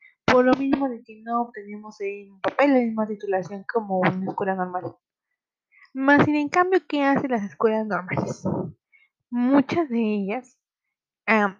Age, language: 20-39, Spanish